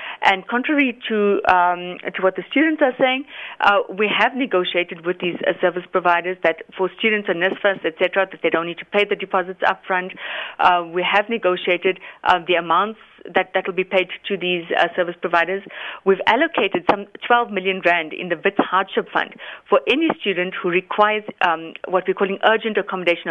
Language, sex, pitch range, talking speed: English, female, 180-220 Hz, 190 wpm